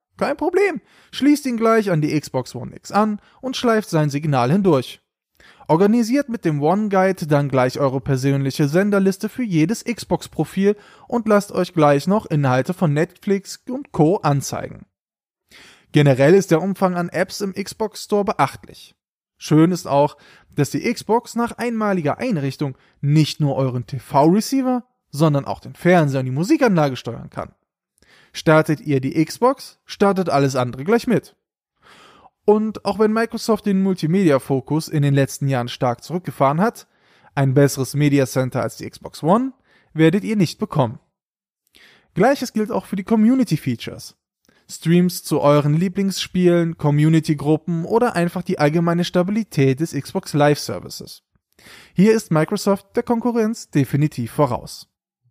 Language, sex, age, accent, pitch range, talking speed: German, male, 20-39, German, 140-205 Hz, 140 wpm